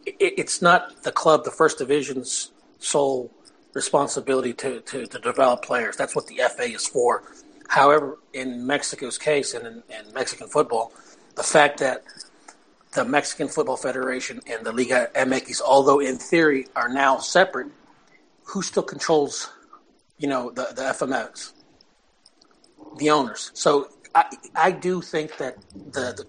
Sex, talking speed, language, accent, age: male, 145 wpm, English, American, 40-59